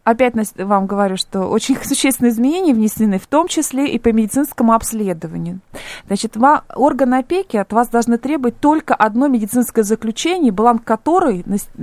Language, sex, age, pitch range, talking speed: Russian, female, 20-39, 200-265 Hz, 140 wpm